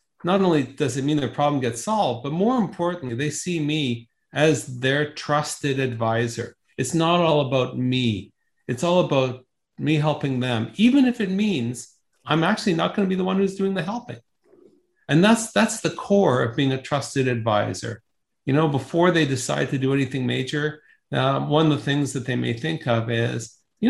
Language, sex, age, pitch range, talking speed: English, male, 40-59, 125-175 Hz, 195 wpm